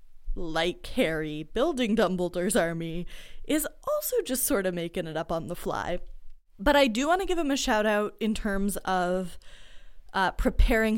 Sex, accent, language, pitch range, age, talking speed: female, American, English, 175-215 Hz, 20-39, 170 wpm